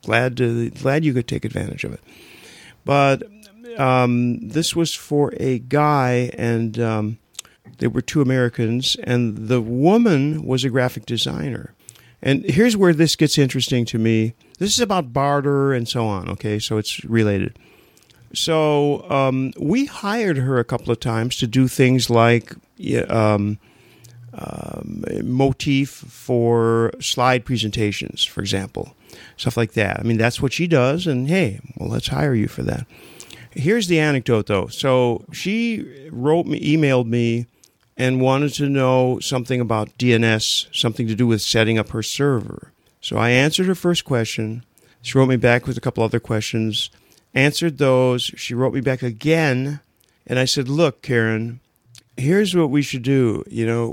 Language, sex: English, male